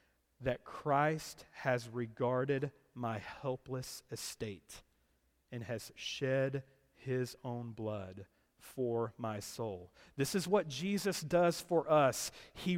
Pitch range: 135-180 Hz